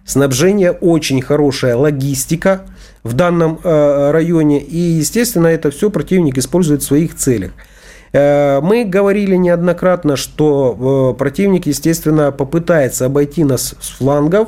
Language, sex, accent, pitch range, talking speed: Russian, male, native, 135-175 Hz, 125 wpm